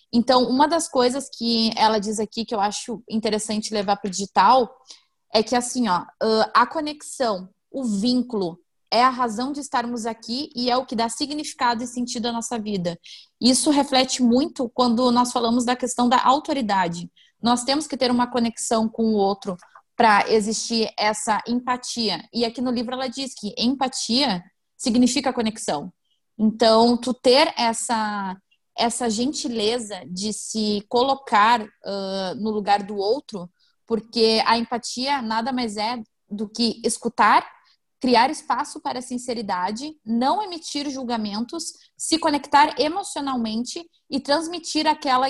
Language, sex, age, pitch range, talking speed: Portuguese, female, 20-39, 220-260 Hz, 145 wpm